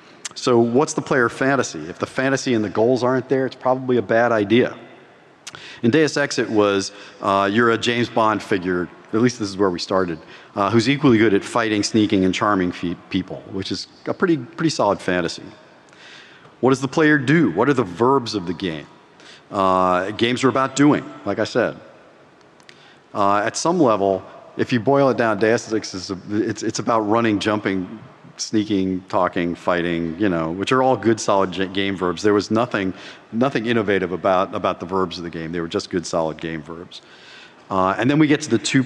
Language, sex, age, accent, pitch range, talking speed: English, male, 40-59, American, 95-125 Hz, 200 wpm